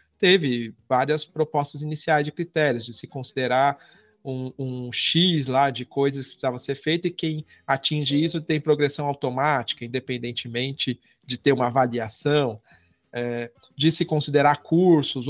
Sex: male